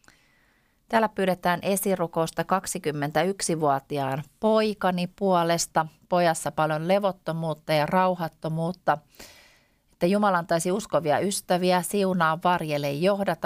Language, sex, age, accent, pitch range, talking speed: Finnish, female, 30-49, native, 150-190 Hz, 85 wpm